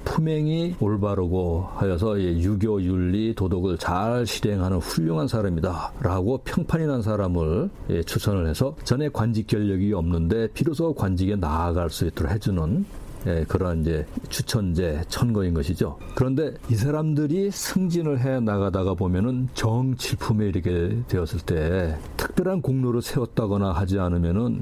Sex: male